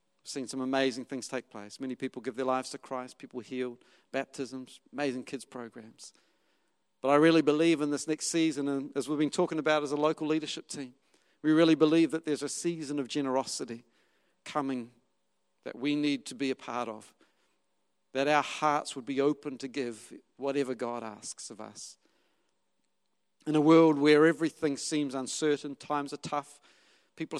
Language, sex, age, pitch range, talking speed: English, male, 50-69, 140-180 Hz, 175 wpm